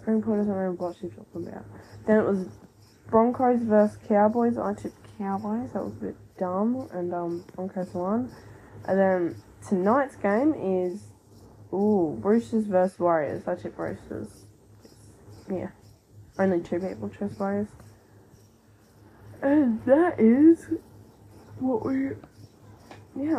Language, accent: English, Australian